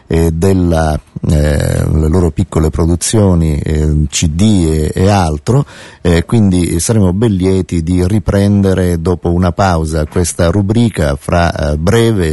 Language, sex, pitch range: Italian, male, 80-95 Hz